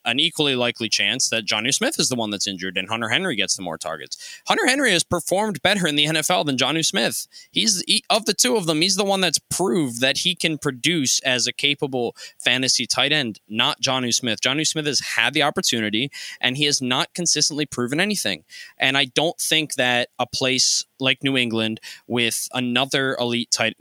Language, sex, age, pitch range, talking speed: English, male, 20-39, 115-155 Hz, 205 wpm